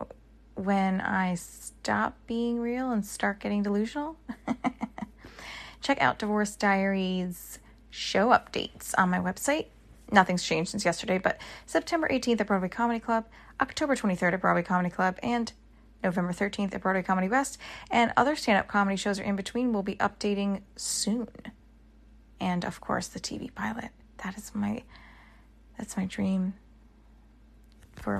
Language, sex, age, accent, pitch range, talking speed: English, female, 20-39, American, 185-220 Hz, 145 wpm